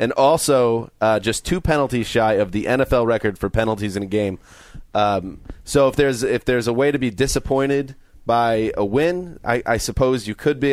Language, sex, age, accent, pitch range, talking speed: English, male, 30-49, American, 105-125 Hz, 200 wpm